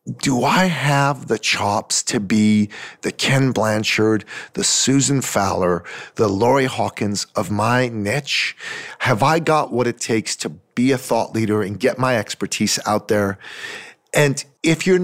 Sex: male